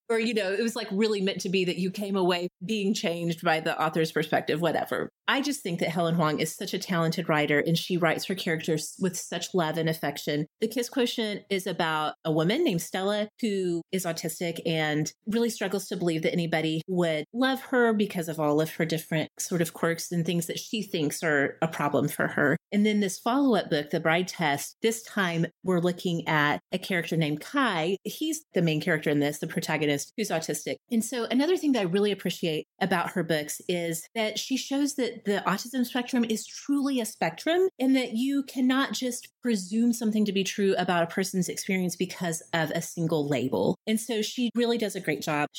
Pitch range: 165-225 Hz